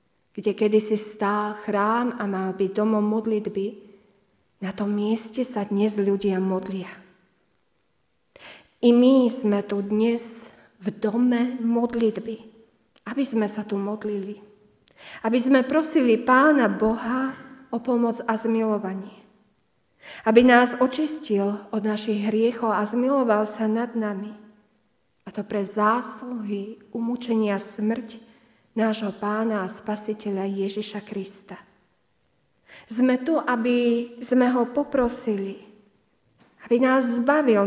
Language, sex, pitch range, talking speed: Slovak, female, 205-240 Hz, 110 wpm